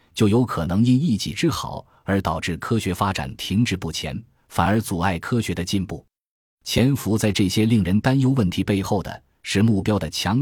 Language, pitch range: Chinese, 85-110 Hz